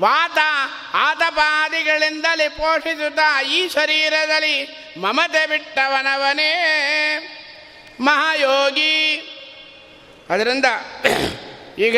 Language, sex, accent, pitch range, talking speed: Kannada, male, native, 285-310 Hz, 50 wpm